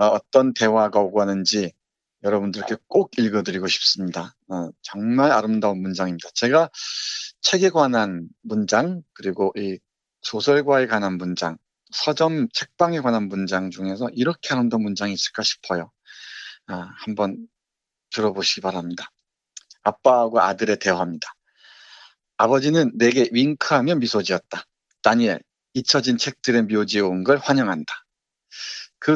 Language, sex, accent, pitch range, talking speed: English, male, Korean, 100-125 Hz, 95 wpm